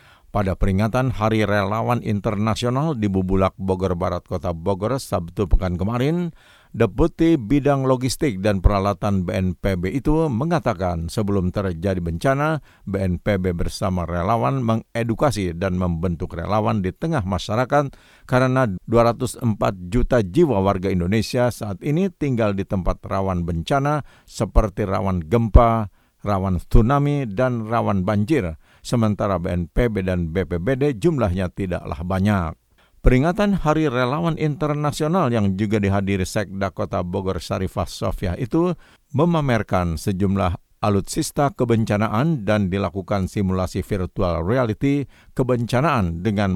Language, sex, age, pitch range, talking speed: Indonesian, male, 50-69, 95-130 Hz, 115 wpm